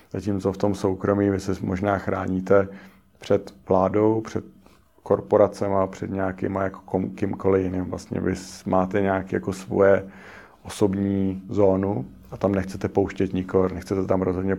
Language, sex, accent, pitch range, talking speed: Czech, male, native, 95-100 Hz, 140 wpm